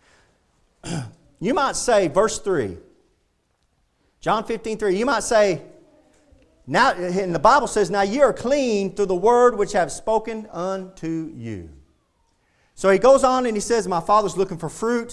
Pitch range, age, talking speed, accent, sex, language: 180-235 Hz, 40-59, 165 wpm, American, male, English